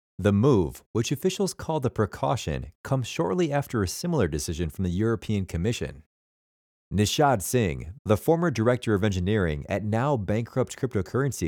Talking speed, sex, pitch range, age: 140 wpm, male, 85-125 Hz, 30-49